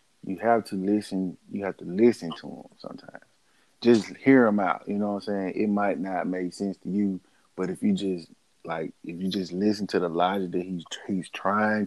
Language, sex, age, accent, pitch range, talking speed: English, male, 20-39, American, 90-105 Hz, 215 wpm